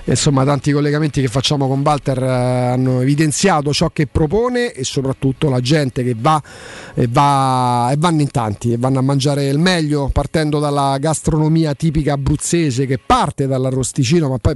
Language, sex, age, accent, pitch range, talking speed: Italian, male, 40-59, native, 140-180 Hz, 165 wpm